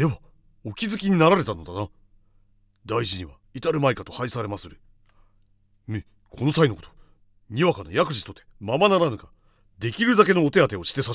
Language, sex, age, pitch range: Japanese, male, 40-59, 100-135 Hz